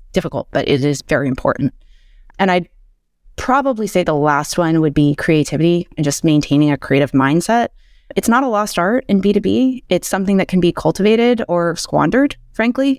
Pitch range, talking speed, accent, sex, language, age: 150-180 Hz, 175 wpm, American, female, English, 30-49